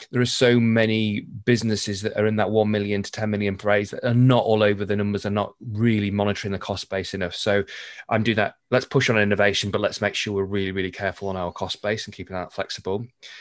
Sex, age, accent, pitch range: male, 20-39, British, 100-120 Hz